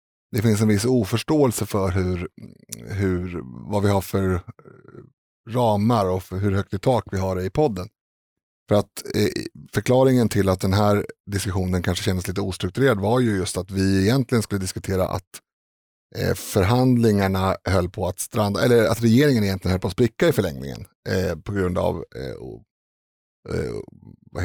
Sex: male